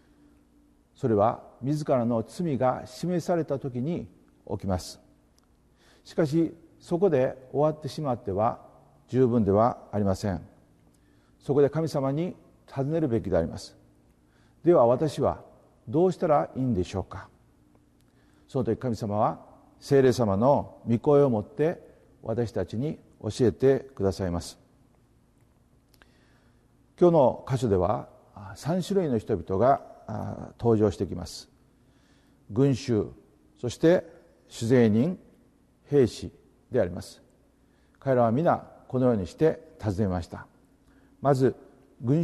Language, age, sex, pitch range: Japanese, 50-69, male, 100-140 Hz